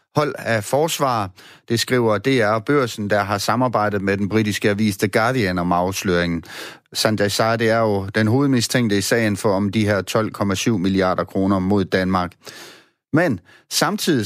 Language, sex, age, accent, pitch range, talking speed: Danish, male, 30-49, native, 100-125 Hz, 160 wpm